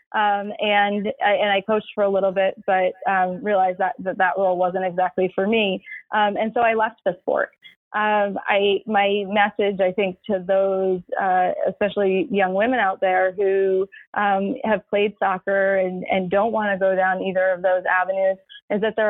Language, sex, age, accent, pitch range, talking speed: English, female, 20-39, American, 190-210 Hz, 190 wpm